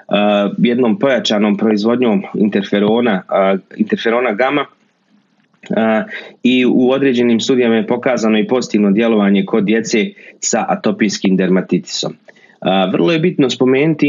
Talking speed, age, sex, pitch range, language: 100 wpm, 30-49, male, 105-135 Hz, Croatian